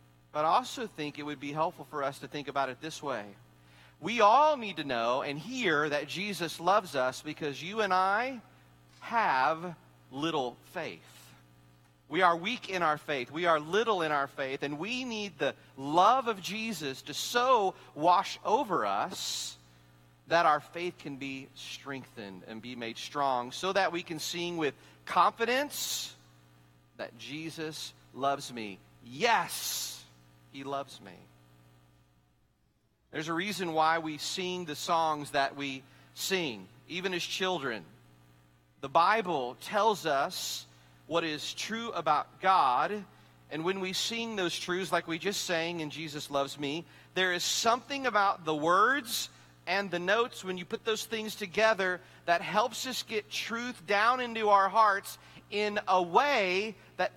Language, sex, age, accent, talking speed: English, male, 40-59, American, 155 wpm